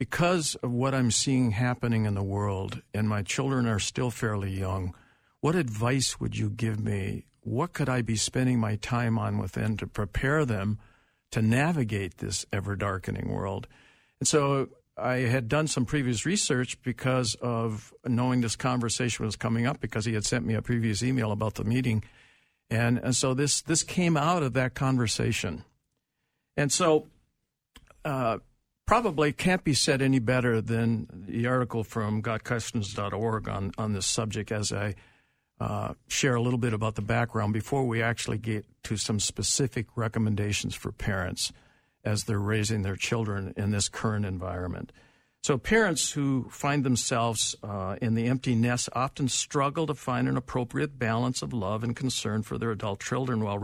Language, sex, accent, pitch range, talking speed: English, male, American, 110-130 Hz, 170 wpm